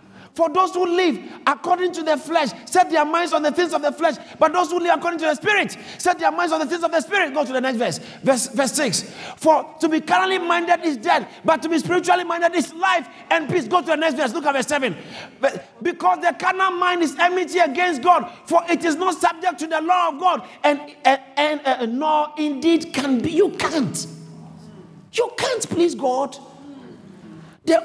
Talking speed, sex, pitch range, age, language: 215 wpm, male, 240-345 Hz, 50-69, English